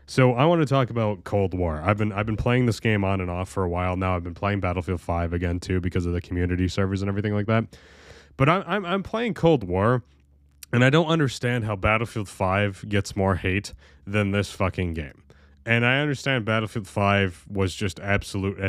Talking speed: 215 wpm